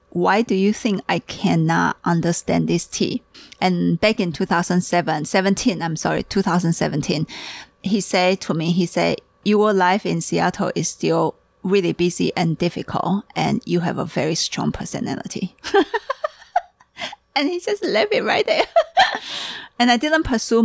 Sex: female